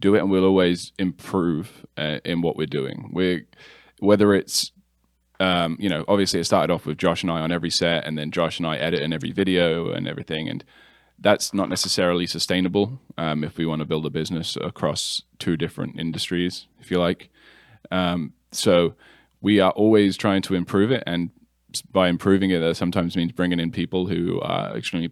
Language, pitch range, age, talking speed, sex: English, 85-95 Hz, 10-29, 195 wpm, male